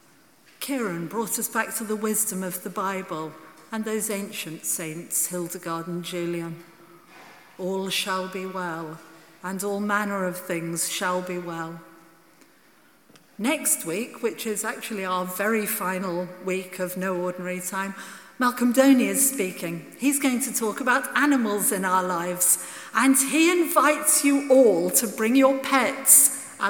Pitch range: 180-225 Hz